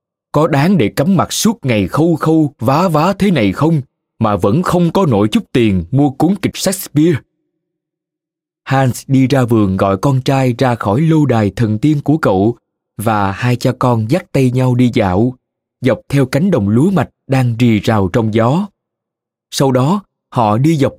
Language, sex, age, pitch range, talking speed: Vietnamese, male, 20-39, 115-160 Hz, 185 wpm